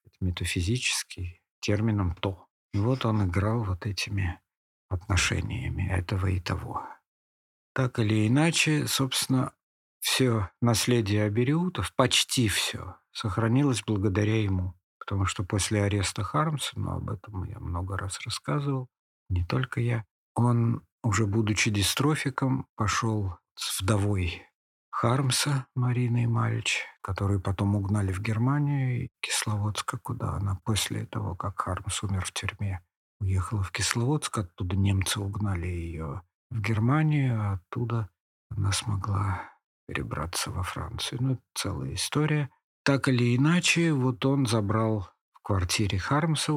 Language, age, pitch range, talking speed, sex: Russian, 50-69, 95-125 Hz, 120 wpm, male